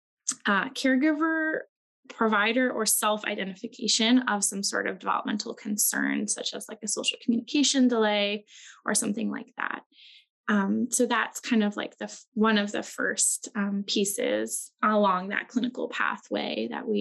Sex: female